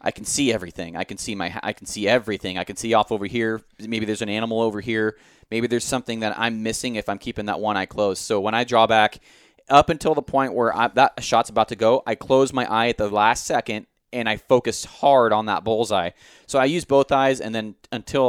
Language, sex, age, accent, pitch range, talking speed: English, male, 30-49, American, 100-120 Hz, 245 wpm